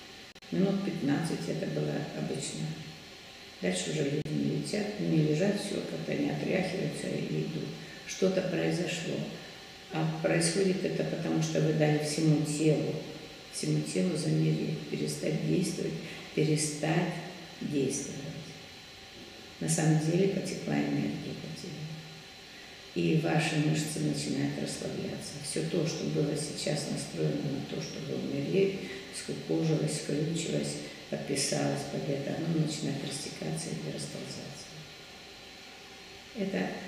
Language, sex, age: Russian, female, 50-69